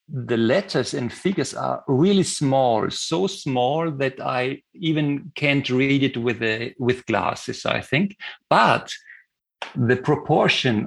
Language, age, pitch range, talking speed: English, 50-69, 130-175 Hz, 125 wpm